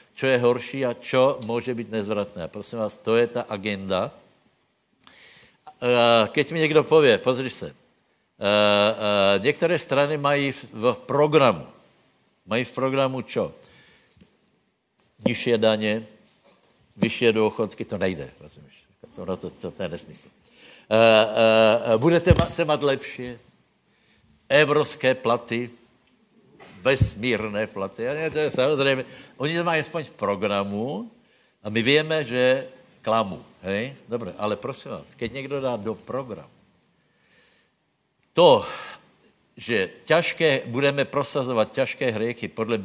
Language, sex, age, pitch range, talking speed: Slovak, male, 60-79, 110-140 Hz, 130 wpm